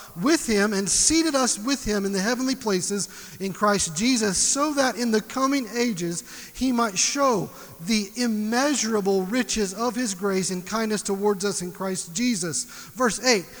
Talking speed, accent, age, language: 170 wpm, American, 40-59, English